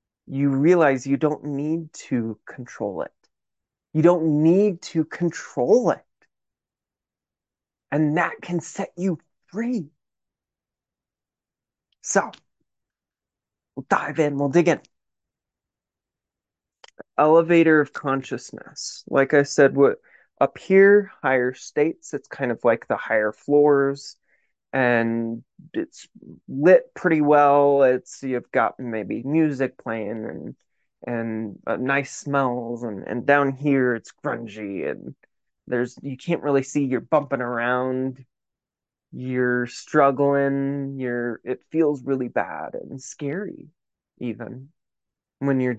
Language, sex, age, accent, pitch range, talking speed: English, male, 30-49, American, 125-155 Hz, 115 wpm